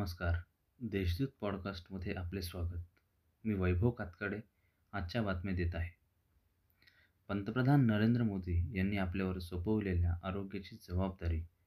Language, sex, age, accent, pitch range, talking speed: Marathi, male, 20-39, native, 90-105 Hz, 95 wpm